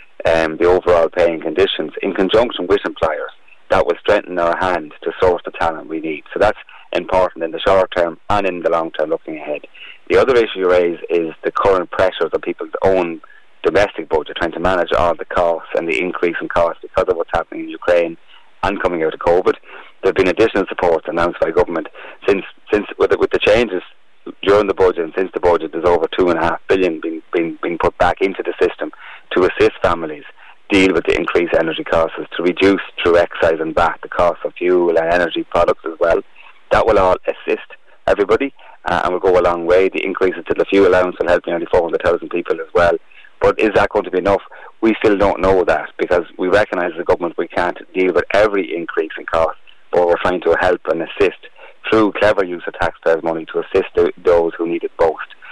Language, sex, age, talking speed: English, male, 30-49, 220 wpm